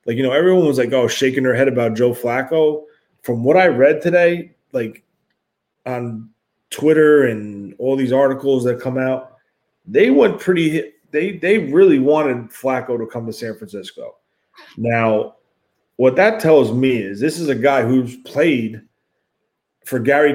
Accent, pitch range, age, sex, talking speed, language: American, 120-150 Hz, 30-49, male, 160 wpm, English